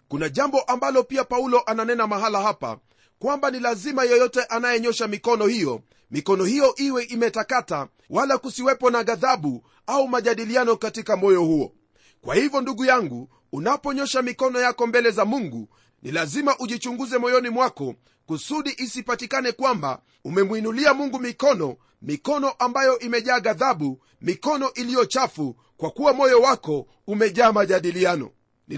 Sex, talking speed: male, 130 wpm